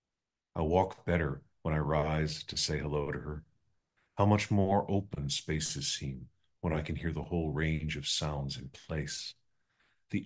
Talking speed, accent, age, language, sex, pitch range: 170 wpm, American, 50-69, English, male, 75-95 Hz